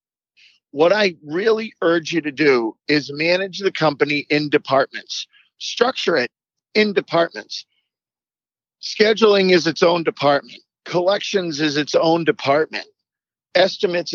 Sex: male